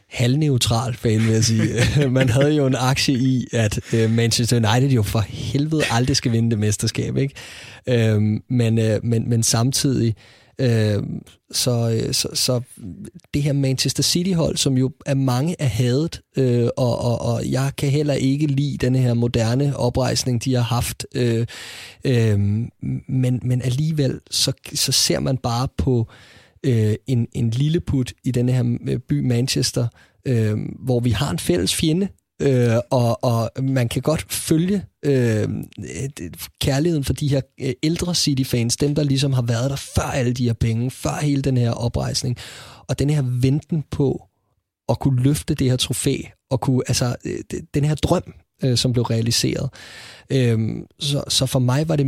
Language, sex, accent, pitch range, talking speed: Danish, male, native, 115-140 Hz, 150 wpm